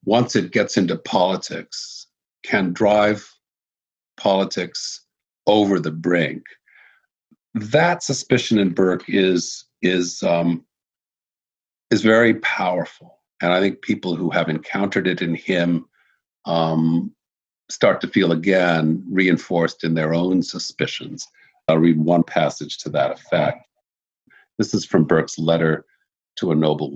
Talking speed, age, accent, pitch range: 125 wpm, 50-69, American, 80-105 Hz